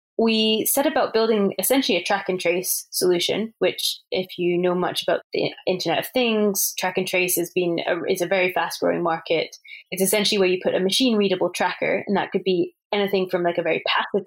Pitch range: 180-215 Hz